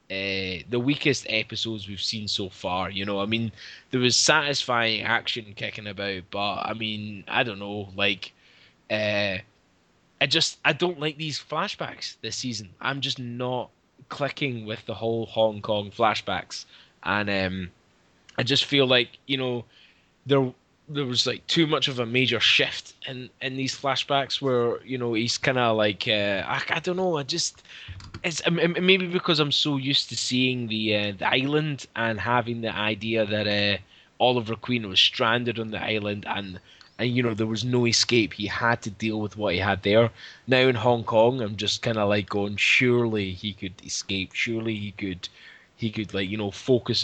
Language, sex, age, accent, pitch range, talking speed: English, male, 10-29, British, 105-125 Hz, 185 wpm